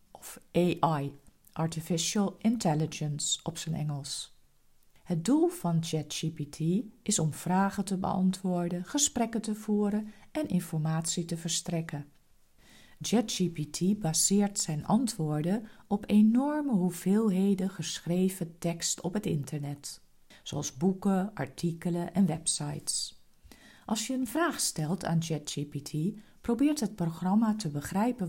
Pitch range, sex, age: 160-210 Hz, female, 50-69